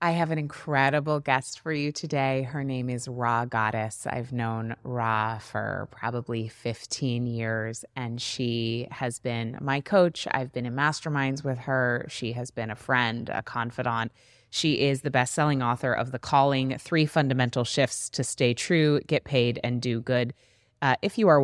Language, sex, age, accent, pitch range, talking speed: English, female, 20-39, American, 120-145 Hz, 175 wpm